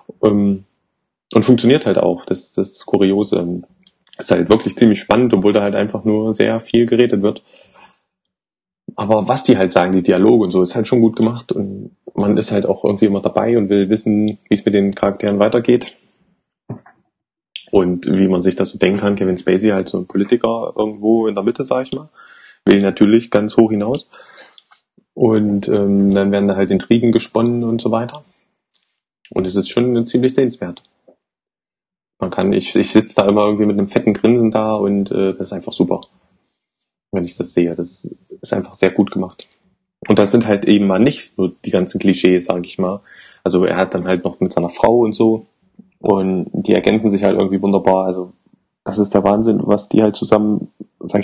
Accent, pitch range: German, 95-115 Hz